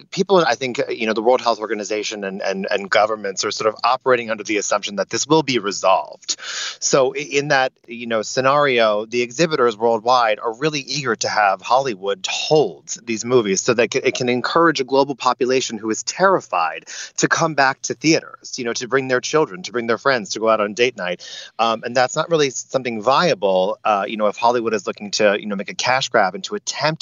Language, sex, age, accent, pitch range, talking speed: English, male, 30-49, American, 110-145 Hz, 220 wpm